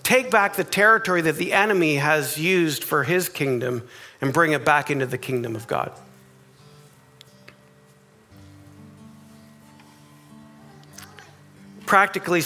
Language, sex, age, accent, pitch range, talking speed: English, male, 40-59, American, 125-180 Hz, 105 wpm